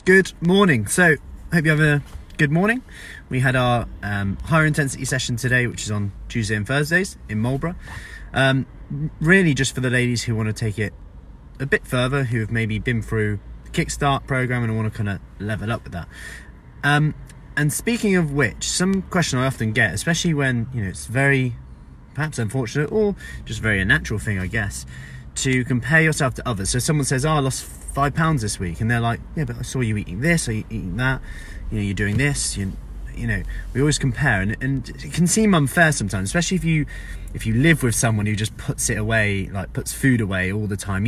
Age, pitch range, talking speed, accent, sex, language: 20-39, 105-150 Hz, 215 wpm, British, male, English